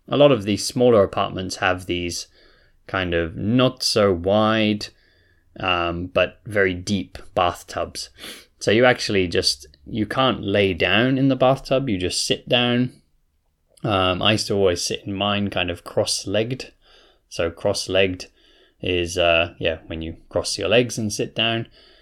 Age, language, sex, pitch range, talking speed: 20-39, English, male, 85-110 Hz, 155 wpm